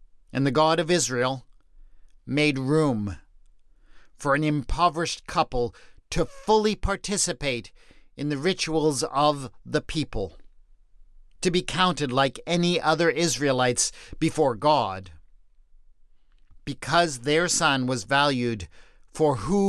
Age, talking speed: 50-69, 110 wpm